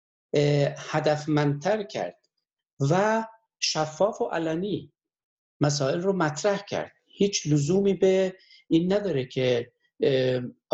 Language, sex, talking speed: Persian, male, 90 wpm